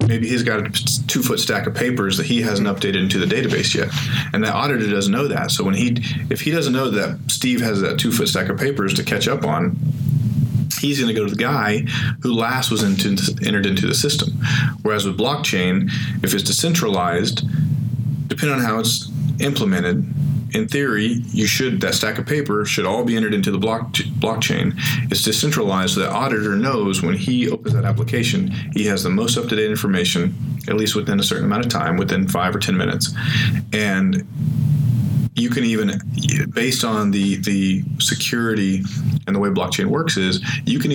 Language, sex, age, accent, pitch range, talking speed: English, male, 40-59, American, 105-140 Hz, 190 wpm